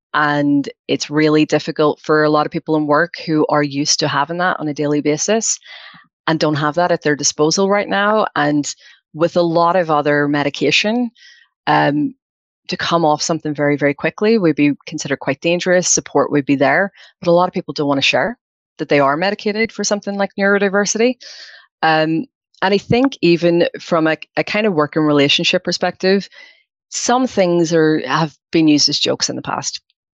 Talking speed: 190 wpm